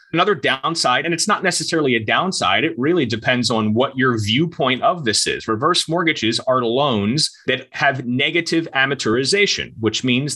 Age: 30-49